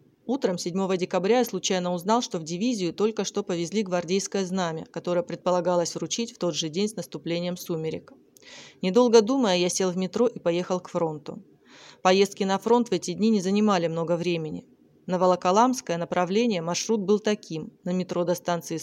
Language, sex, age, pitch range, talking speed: Russian, female, 20-39, 170-205 Hz, 170 wpm